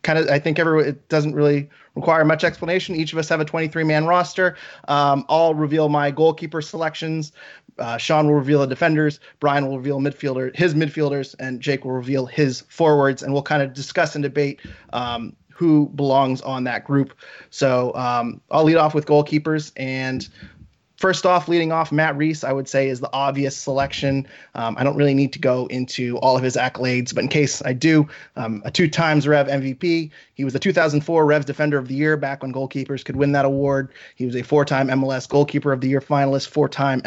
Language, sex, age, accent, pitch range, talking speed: English, male, 30-49, American, 135-155 Hz, 200 wpm